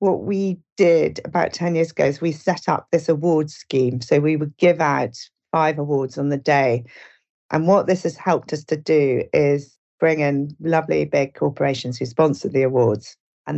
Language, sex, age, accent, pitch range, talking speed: English, female, 40-59, British, 140-165 Hz, 190 wpm